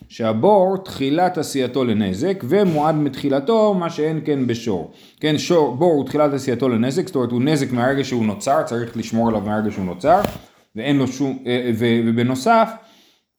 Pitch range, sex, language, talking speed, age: 125-175 Hz, male, Hebrew, 145 wpm, 30-49